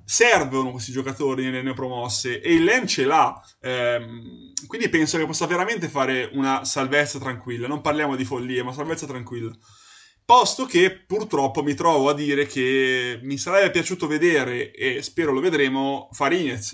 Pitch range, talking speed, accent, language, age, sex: 125-155 Hz, 160 wpm, native, Italian, 20-39, male